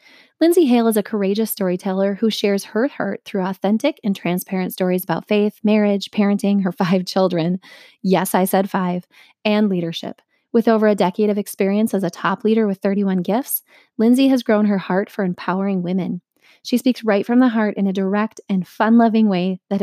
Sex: female